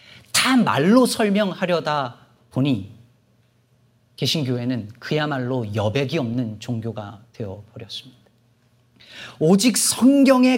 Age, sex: 40-59, male